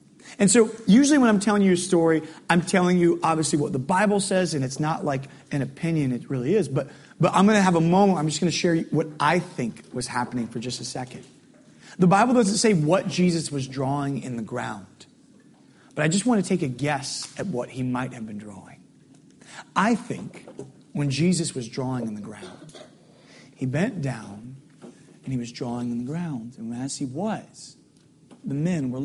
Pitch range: 125-175 Hz